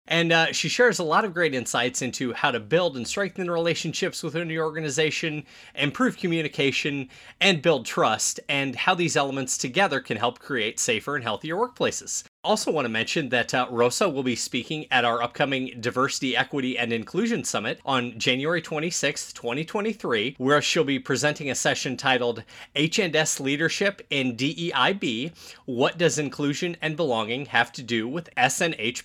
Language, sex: English, male